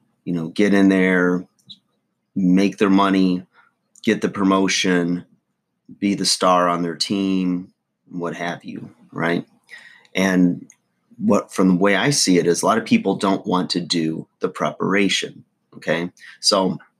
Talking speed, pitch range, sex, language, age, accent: 150 wpm, 90-105 Hz, male, English, 30-49, American